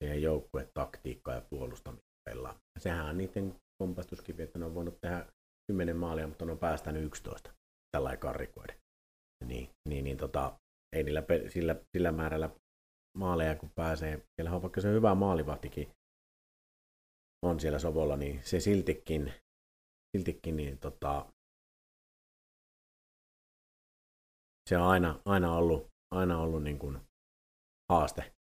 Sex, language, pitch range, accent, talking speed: male, Finnish, 70-90 Hz, native, 120 wpm